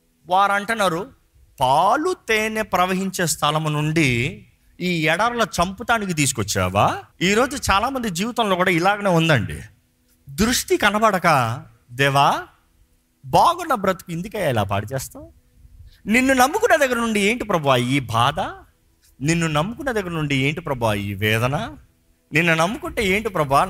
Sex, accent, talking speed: male, native, 115 wpm